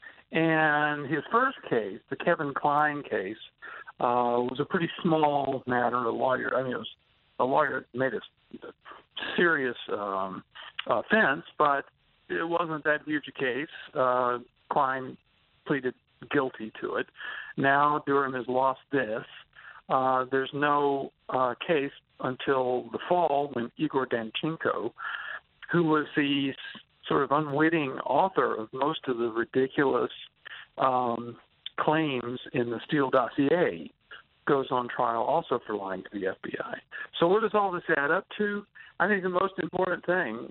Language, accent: English, American